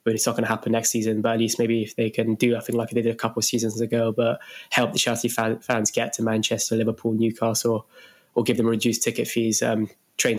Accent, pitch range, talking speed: British, 115-120 Hz, 275 wpm